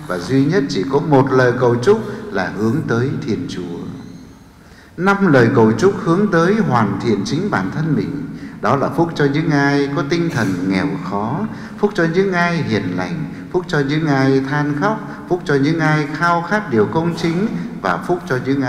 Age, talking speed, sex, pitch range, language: 60-79, 200 wpm, male, 120-175 Hz, English